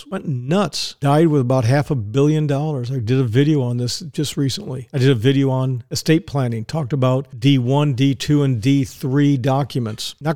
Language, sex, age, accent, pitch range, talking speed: English, male, 50-69, American, 130-160 Hz, 185 wpm